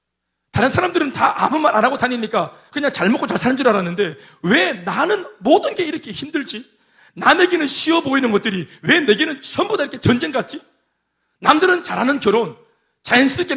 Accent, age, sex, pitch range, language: native, 30-49, male, 210-305 Hz, Korean